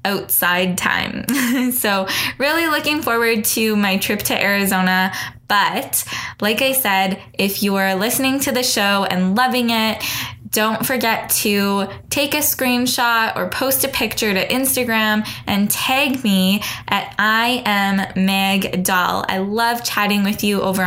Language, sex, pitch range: English, female, 195-230 Hz